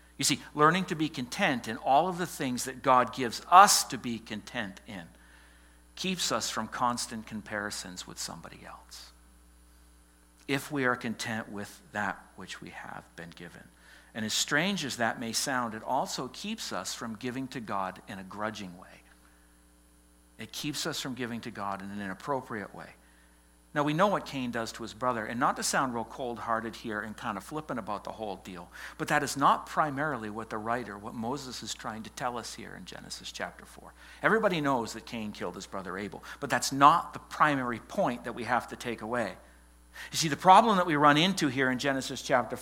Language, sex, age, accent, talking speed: English, male, 60-79, American, 205 wpm